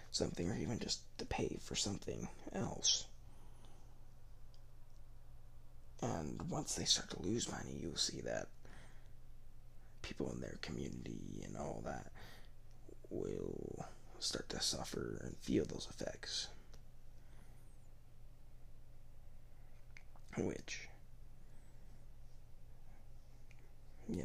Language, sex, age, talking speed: English, male, 20-39, 90 wpm